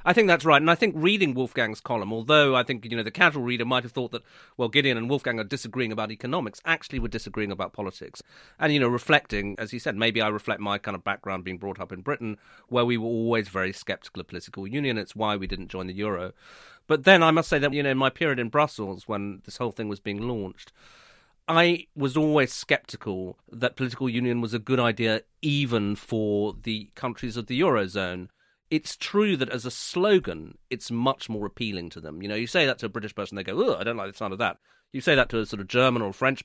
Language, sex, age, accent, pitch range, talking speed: English, male, 40-59, British, 105-135 Hz, 245 wpm